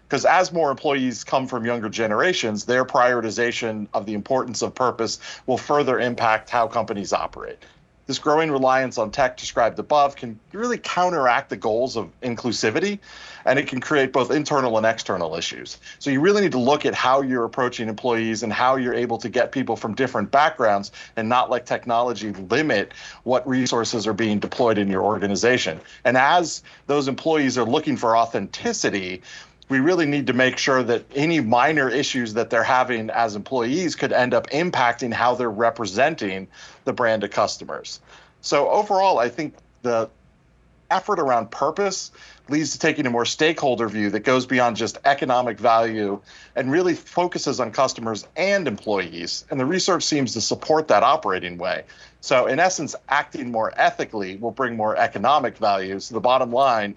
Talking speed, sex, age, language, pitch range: 175 wpm, male, 40-59, English, 110-140 Hz